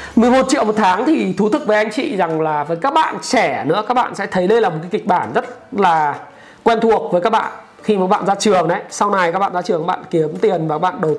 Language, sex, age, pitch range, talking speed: Vietnamese, male, 20-39, 160-215 Hz, 295 wpm